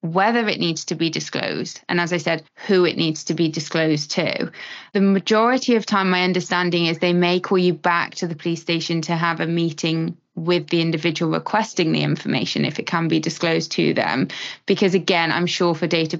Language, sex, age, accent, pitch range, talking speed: English, female, 20-39, British, 170-195 Hz, 205 wpm